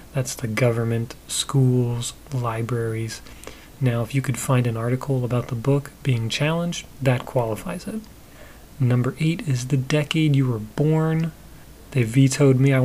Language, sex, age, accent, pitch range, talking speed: English, male, 30-49, American, 120-140 Hz, 150 wpm